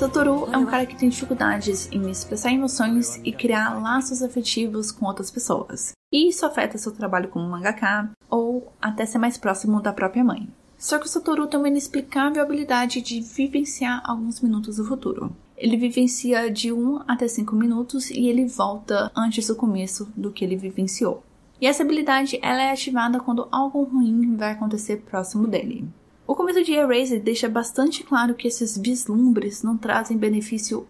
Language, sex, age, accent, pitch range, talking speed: Portuguese, female, 10-29, Brazilian, 220-265 Hz, 170 wpm